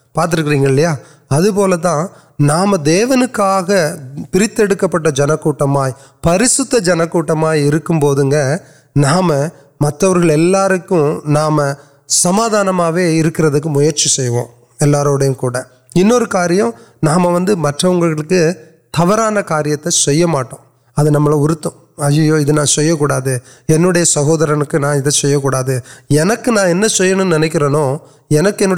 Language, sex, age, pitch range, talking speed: Urdu, male, 30-49, 145-180 Hz, 65 wpm